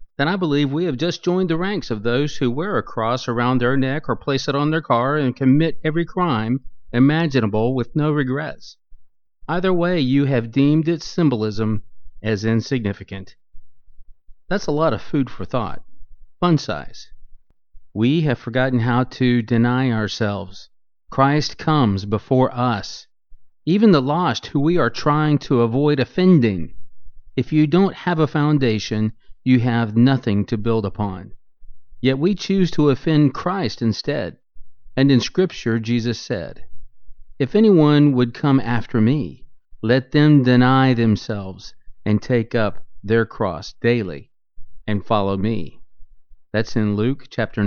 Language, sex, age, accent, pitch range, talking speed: English, male, 40-59, American, 110-140 Hz, 150 wpm